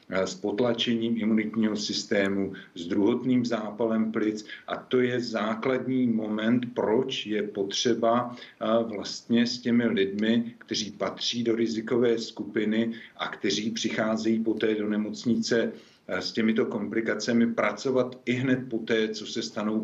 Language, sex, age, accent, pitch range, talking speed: Czech, male, 50-69, native, 110-120 Hz, 125 wpm